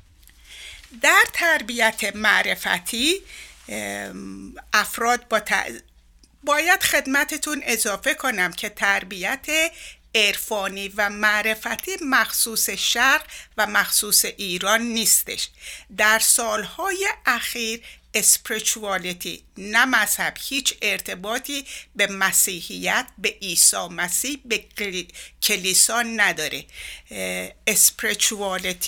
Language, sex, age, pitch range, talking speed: Persian, female, 60-79, 195-265 Hz, 80 wpm